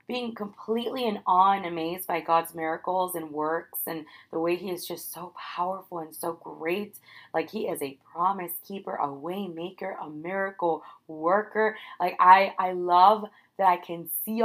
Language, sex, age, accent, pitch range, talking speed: English, female, 20-39, American, 170-210 Hz, 175 wpm